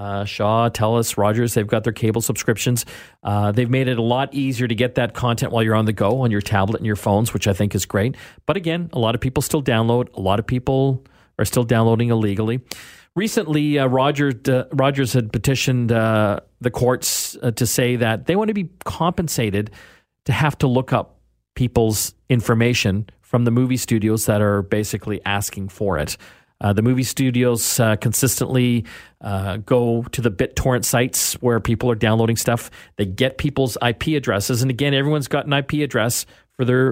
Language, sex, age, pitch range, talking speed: English, male, 40-59, 105-130 Hz, 195 wpm